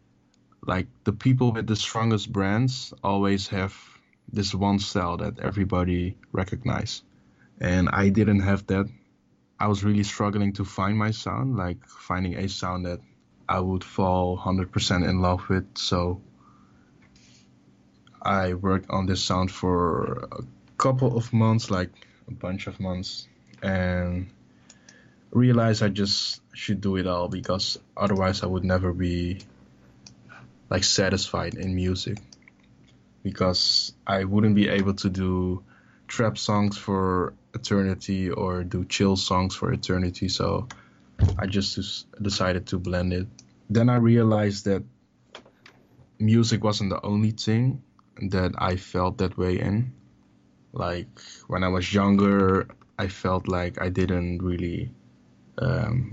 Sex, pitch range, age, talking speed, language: male, 90-105 Hz, 20-39, 135 wpm, English